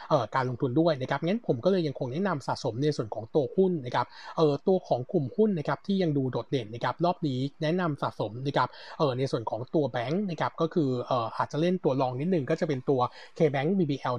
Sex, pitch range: male, 135-170 Hz